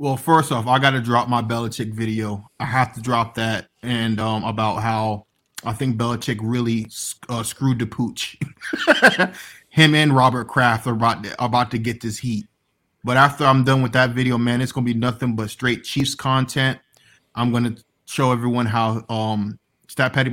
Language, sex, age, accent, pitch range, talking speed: English, male, 20-39, American, 115-140 Hz, 185 wpm